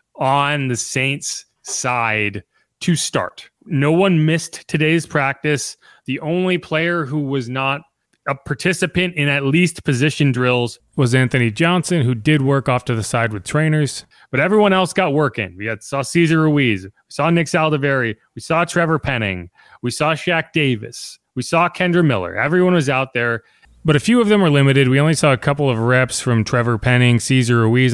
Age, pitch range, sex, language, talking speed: 30-49, 120-155 Hz, male, English, 180 wpm